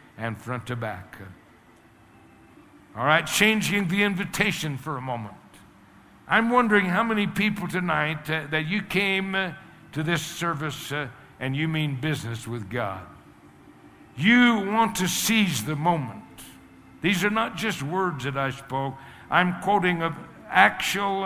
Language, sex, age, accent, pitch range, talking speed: English, male, 60-79, American, 125-190 Hz, 140 wpm